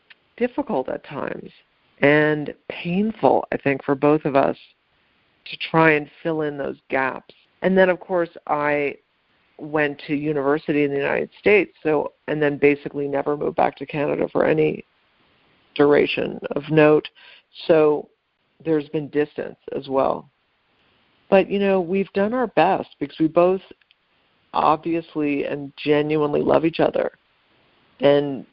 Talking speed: 140 wpm